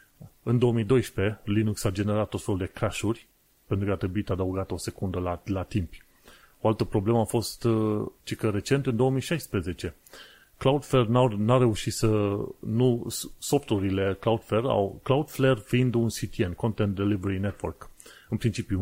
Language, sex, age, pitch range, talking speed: Romanian, male, 30-49, 100-125 Hz, 145 wpm